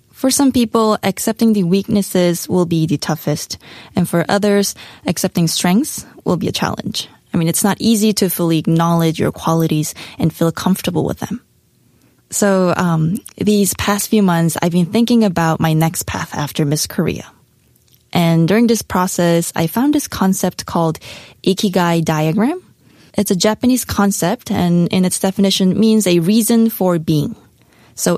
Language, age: Korean, 20-39